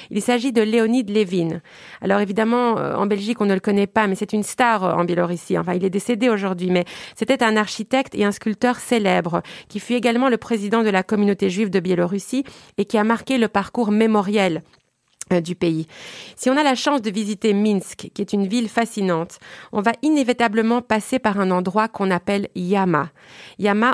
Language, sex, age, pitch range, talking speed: French, female, 30-49, 190-225 Hz, 195 wpm